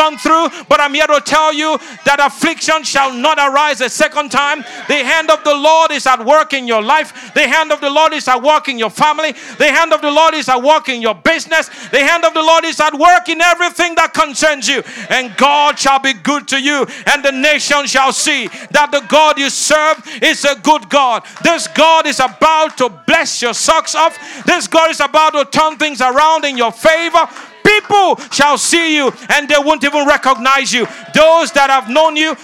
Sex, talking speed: male, 215 wpm